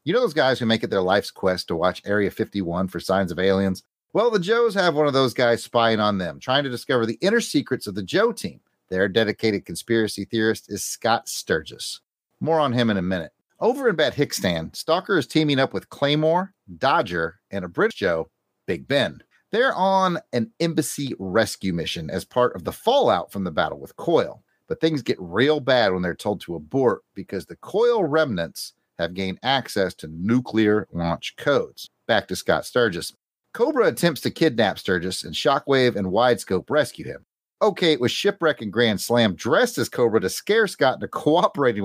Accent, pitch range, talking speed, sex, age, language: American, 95-160 Hz, 195 wpm, male, 40-59, English